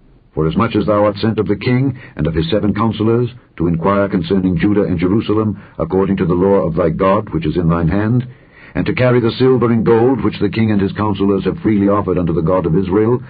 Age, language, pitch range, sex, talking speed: 60-79, English, 90-115 Hz, male, 235 wpm